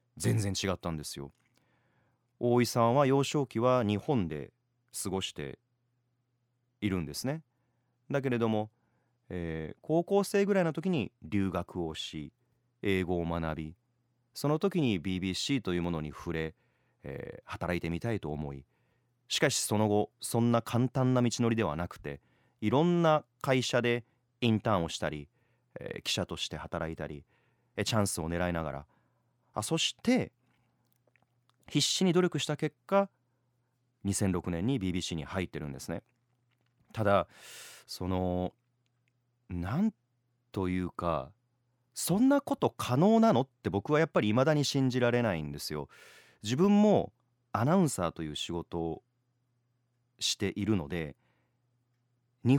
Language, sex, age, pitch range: Japanese, male, 30-49, 90-130 Hz